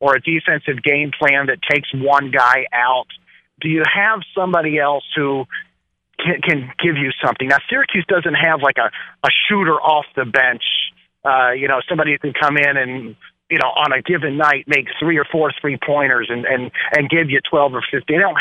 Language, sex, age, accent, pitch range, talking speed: English, male, 40-59, American, 140-175 Hz, 205 wpm